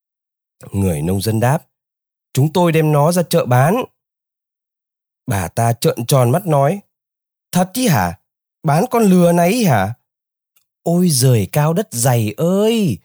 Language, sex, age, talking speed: Vietnamese, male, 20-39, 145 wpm